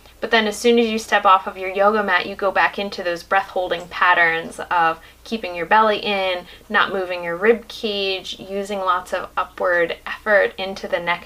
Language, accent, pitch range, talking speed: English, American, 185-225 Hz, 195 wpm